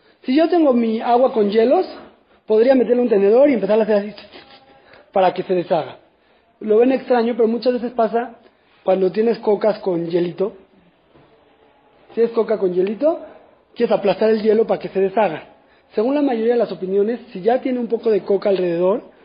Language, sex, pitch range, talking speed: Spanish, male, 200-275 Hz, 185 wpm